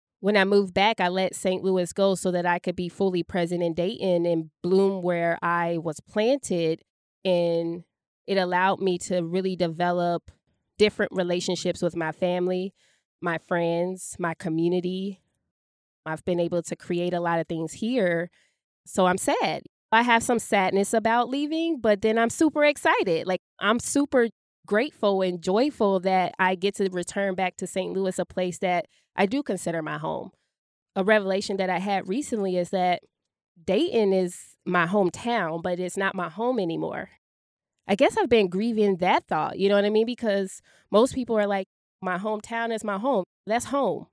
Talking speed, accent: 175 wpm, American